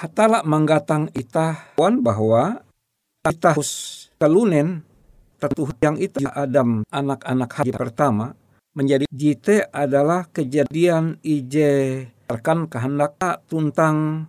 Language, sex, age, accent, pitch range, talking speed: Indonesian, male, 60-79, native, 130-170 Hz, 95 wpm